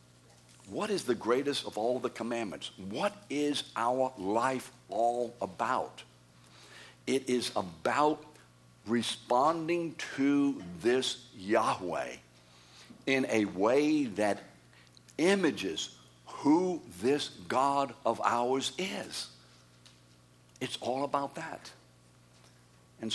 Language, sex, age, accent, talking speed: English, male, 60-79, American, 95 wpm